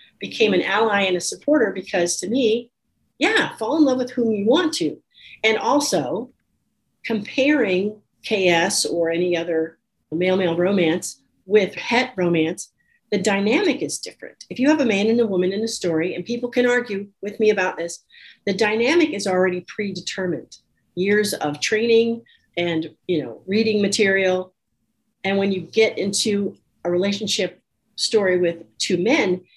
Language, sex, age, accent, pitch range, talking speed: English, female, 40-59, American, 175-225 Hz, 155 wpm